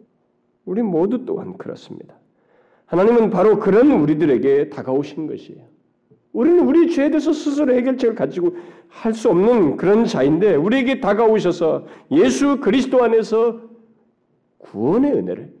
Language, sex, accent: Korean, male, native